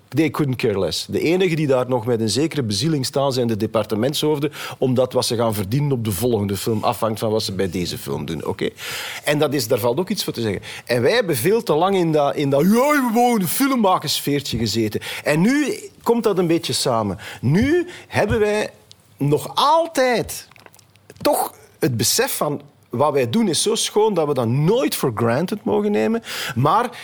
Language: Dutch